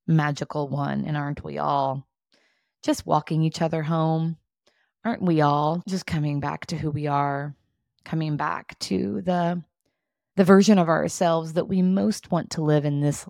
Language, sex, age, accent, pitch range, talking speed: English, female, 20-39, American, 150-185 Hz, 165 wpm